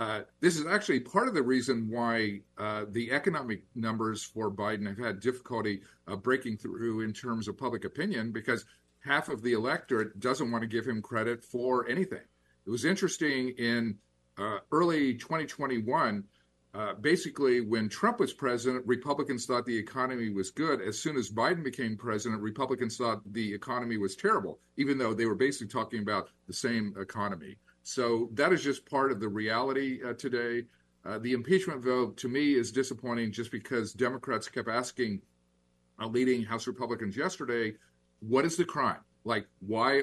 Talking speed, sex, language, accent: 170 wpm, male, English, American